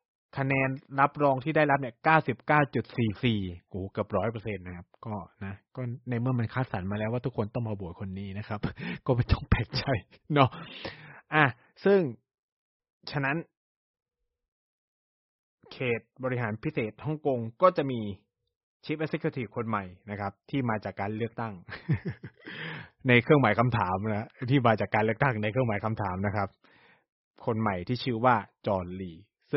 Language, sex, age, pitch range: Thai, male, 20-39, 105-135 Hz